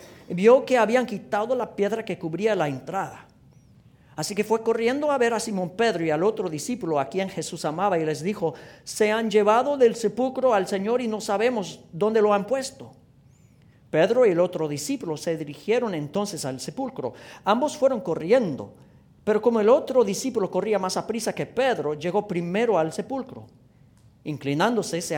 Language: English